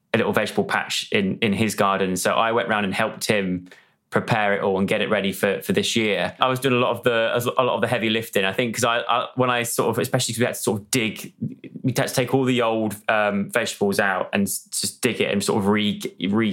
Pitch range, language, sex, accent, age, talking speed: 100-125 Hz, English, male, British, 20-39, 270 wpm